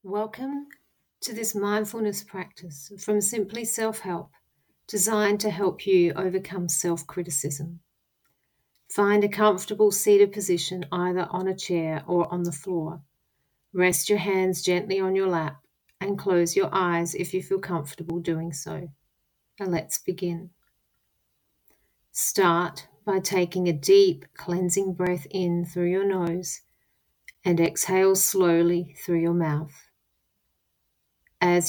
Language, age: English, 40-59